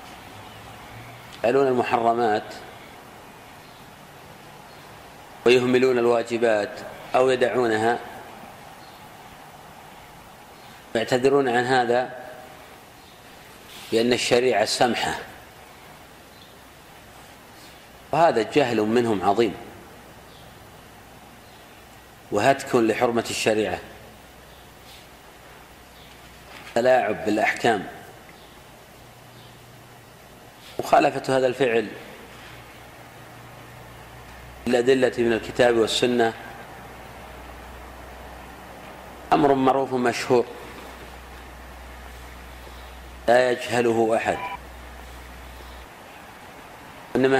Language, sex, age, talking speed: Arabic, male, 40-59, 45 wpm